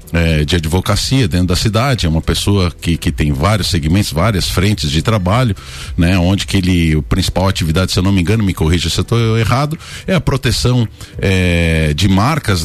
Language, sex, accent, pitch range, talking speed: Portuguese, male, Brazilian, 90-125 Hz, 195 wpm